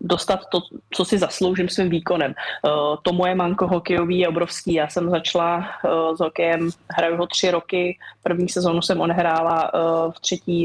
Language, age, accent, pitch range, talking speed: Czech, 20-39, native, 170-185 Hz, 160 wpm